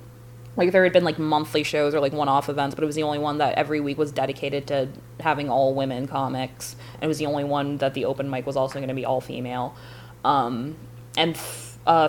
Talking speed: 220 wpm